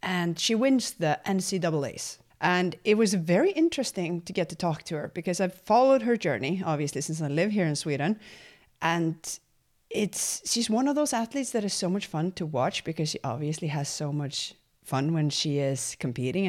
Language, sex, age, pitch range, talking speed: English, female, 30-49, 155-205 Hz, 195 wpm